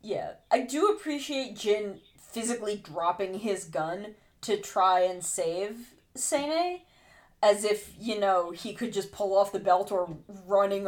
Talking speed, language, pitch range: 150 wpm, English, 180-225 Hz